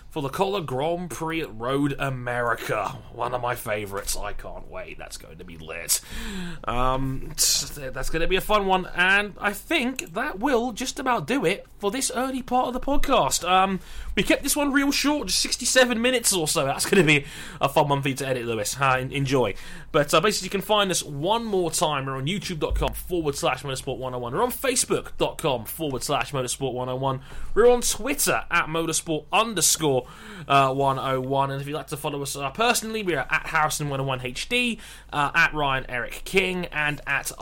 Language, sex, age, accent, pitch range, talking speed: English, male, 20-39, British, 135-190 Hz, 190 wpm